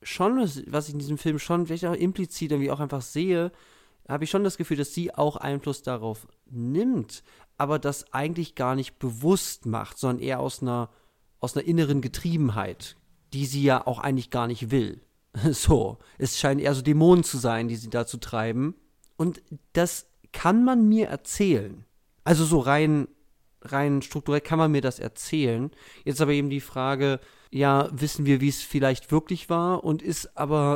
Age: 40-59